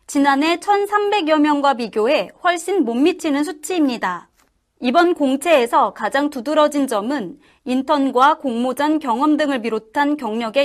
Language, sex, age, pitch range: Korean, female, 30-49, 245-320 Hz